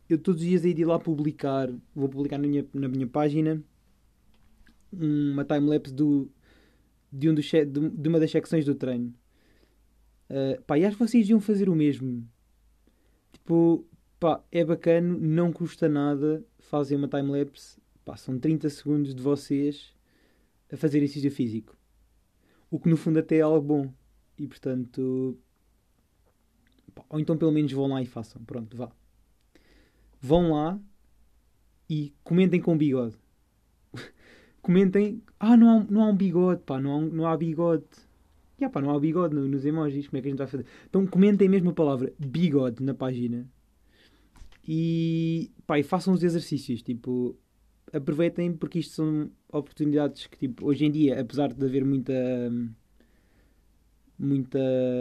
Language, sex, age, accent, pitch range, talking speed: Portuguese, male, 20-39, Portuguese, 130-160 Hz, 150 wpm